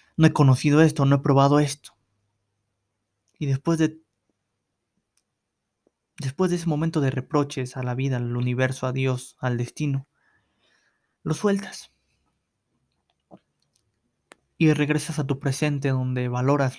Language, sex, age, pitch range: Spanish, male, 20-39, 130-150 Hz